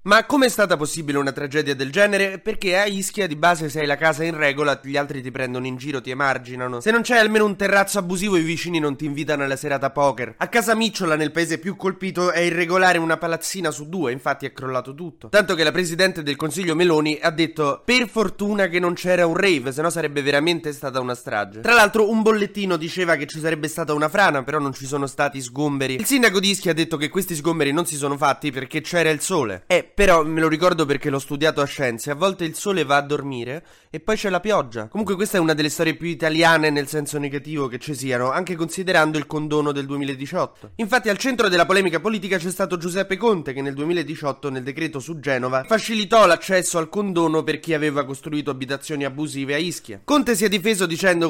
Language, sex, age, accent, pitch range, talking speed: Italian, male, 20-39, native, 145-185 Hz, 225 wpm